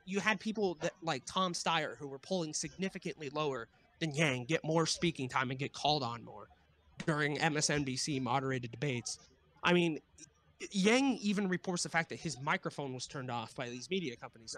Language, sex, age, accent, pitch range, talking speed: English, male, 20-39, American, 150-200 Hz, 175 wpm